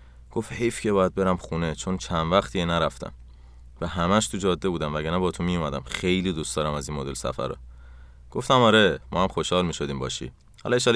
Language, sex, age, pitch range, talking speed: Persian, male, 30-49, 70-95 Hz, 210 wpm